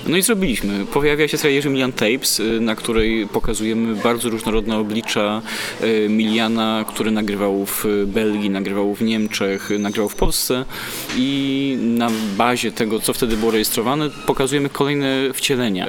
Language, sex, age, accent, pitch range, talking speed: Polish, male, 20-39, native, 110-145 Hz, 135 wpm